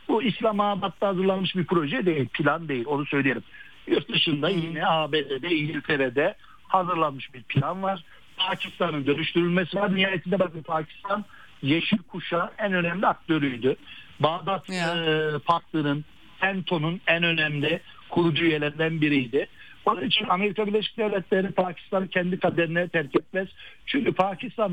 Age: 60-79